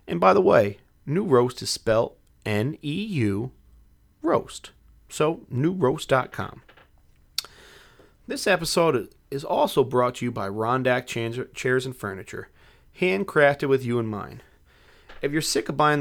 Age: 30-49